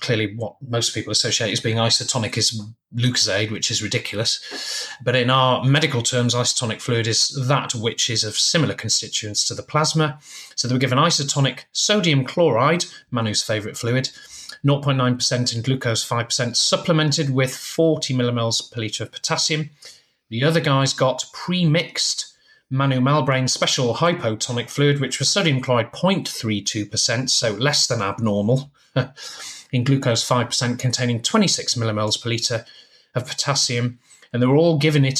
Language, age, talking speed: English, 30-49, 150 wpm